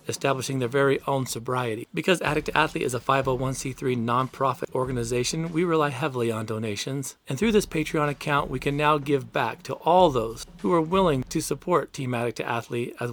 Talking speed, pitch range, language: 190 wpm, 120-150 Hz, English